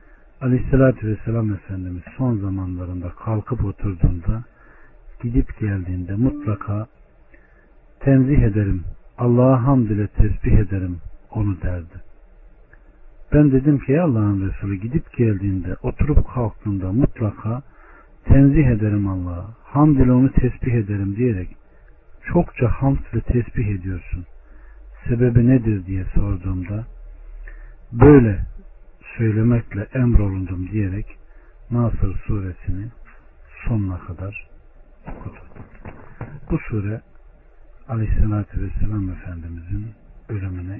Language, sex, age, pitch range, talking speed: Turkish, male, 60-79, 90-120 Hz, 90 wpm